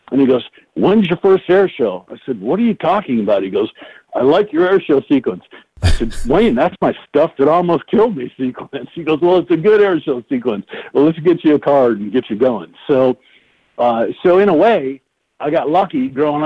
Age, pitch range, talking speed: 60-79, 120-150 Hz, 230 wpm